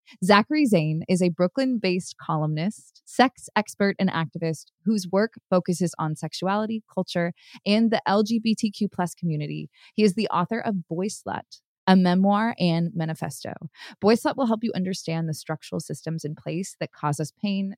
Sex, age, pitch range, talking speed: female, 20-39, 165-210 Hz, 155 wpm